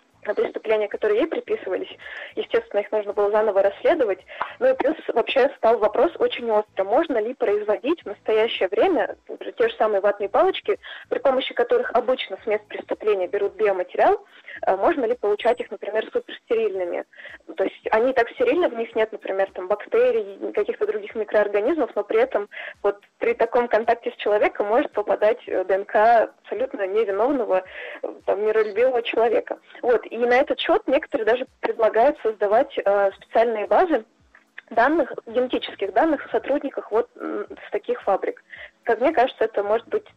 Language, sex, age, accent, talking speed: Russian, female, 20-39, native, 155 wpm